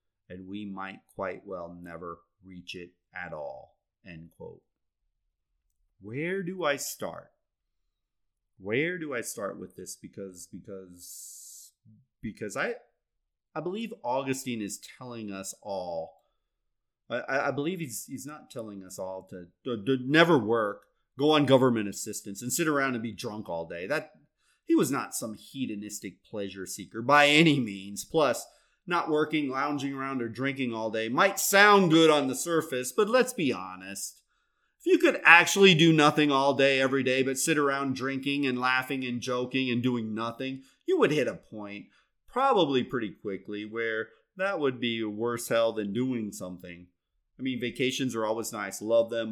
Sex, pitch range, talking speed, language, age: male, 100-145 Hz, 165 wpm, English, 30-49